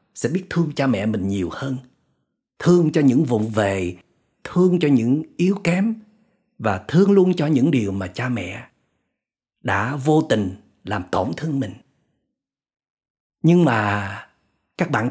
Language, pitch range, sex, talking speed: Vietnamese, 110-165 Hz, male, 150 wpm